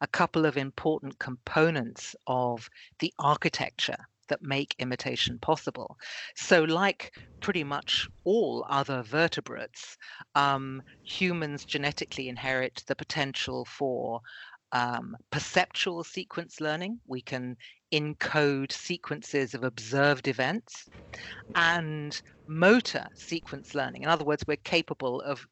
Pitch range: 135-180 Hz